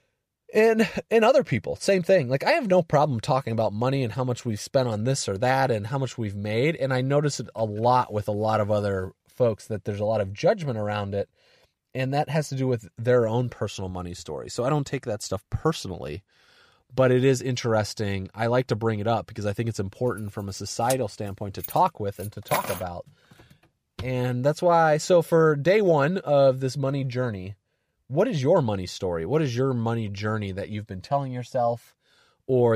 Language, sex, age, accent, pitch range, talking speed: English, male, 30-49, American, 105-130 Hz, 220 wpm